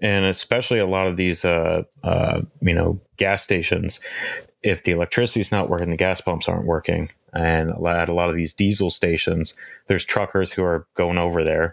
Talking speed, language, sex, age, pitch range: 190 wpm, English, male, 30-49, 80-95 Hz